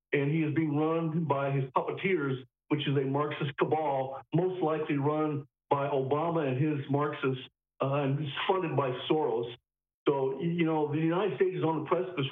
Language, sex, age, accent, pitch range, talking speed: English, male, 50-69, American, 145-175 Hz, 175 wpm